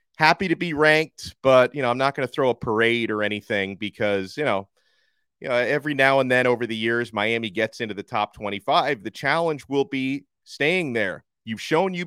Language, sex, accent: English, male, American